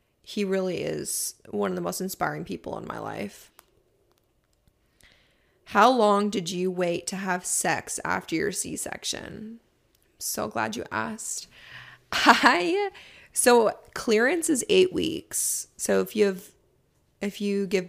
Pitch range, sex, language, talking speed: 185-245 Hz, female, English, 140 wpm